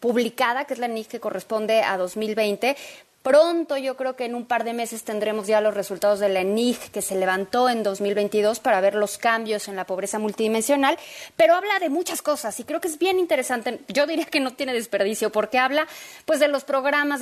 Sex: female